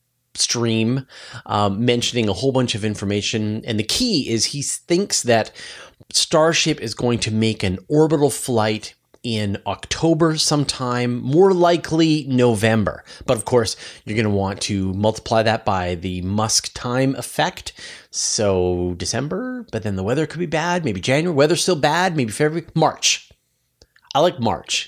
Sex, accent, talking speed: male, American, 155 wpm